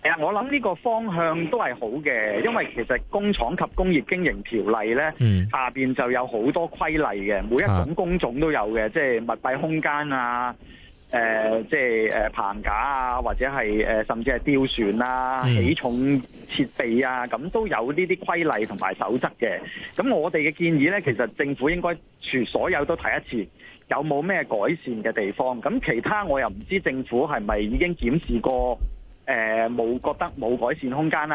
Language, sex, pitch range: Chinese, male, 115-160 Hz